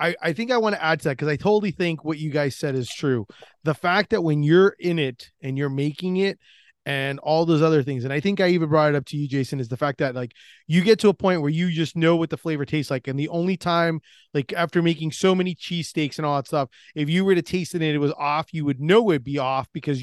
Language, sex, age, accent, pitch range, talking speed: English, male, 30-49, American, 150-185 Hz, 285 wpm